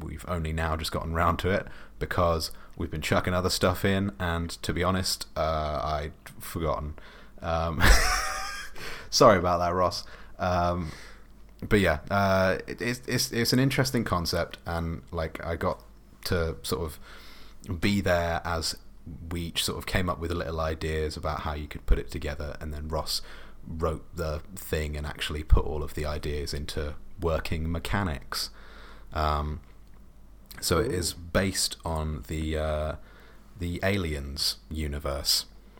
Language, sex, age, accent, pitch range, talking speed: English, male, 30-49, British, 75-90 Hz, 150 wpm